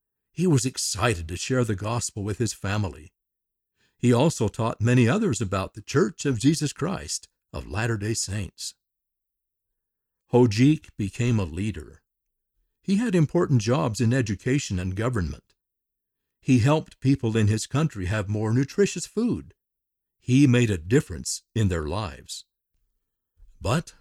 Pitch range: 100-135 Hz